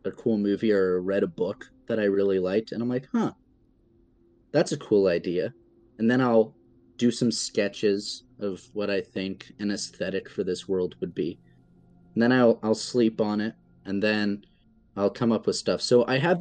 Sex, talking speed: male, 195 wpm